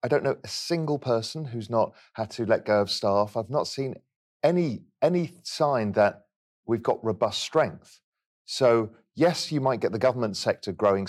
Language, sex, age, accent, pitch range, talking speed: English, male, 40-59, British, 95-135 Hz, 185 wpm